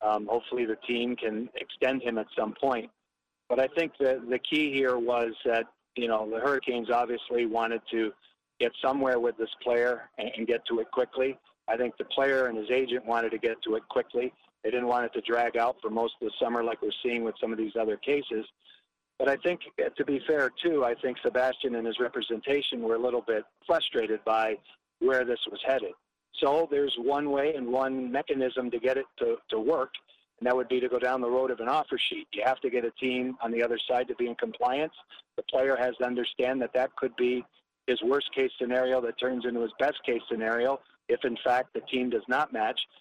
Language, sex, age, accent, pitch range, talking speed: English, male, 50-69, American, 115-135 Hz, 220 wpm